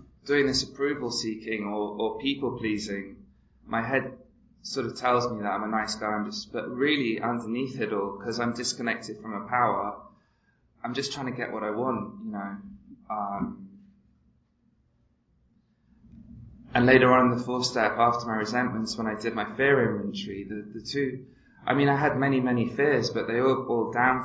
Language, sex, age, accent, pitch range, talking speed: English, male, 20-39, British, 110-135 Hz, 180 wpm